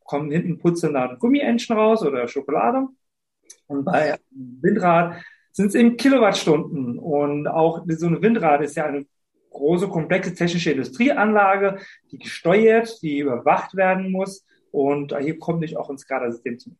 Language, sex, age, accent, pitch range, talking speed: German, male, 40-59, German, 140-185 Hz, 145 wpm